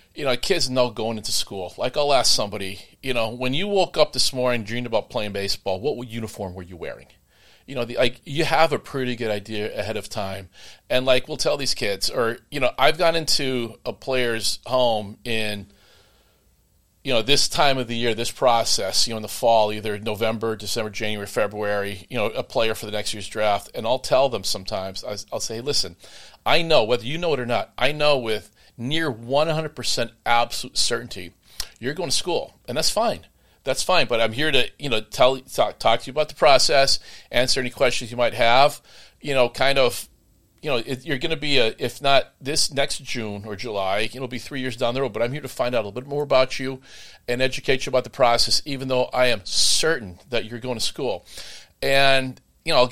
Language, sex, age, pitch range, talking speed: English, male, 40-59, 105-135 Hz, 220 wpm